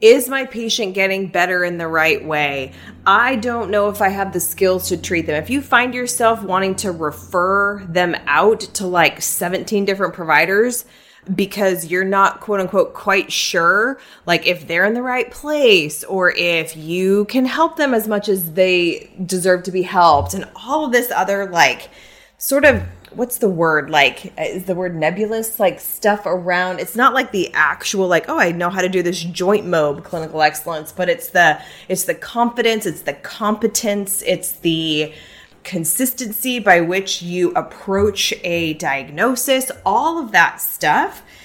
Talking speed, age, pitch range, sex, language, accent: 175 wpm, 20-39, 170-230 Hz, female, English, American